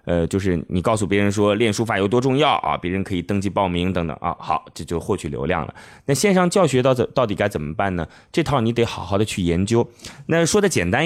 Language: Chinese